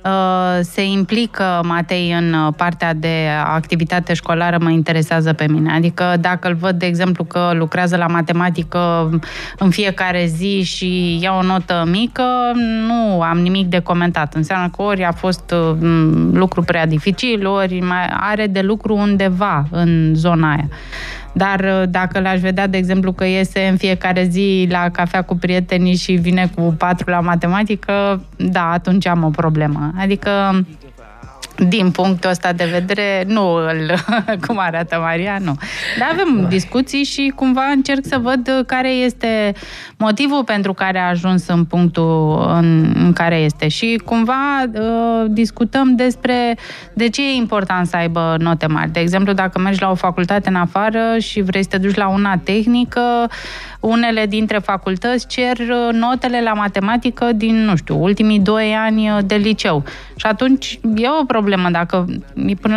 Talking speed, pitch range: 150 wpm, 175-225 Hz